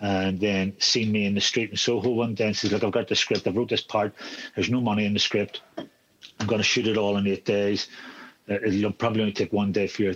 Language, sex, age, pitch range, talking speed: English, male, 40-59, 95-115 Hz, 260 wpm